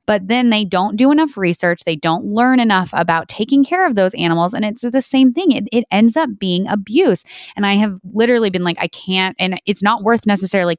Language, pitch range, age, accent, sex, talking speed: English, 160-205 Hz, 20-39, American, female, 230 wpm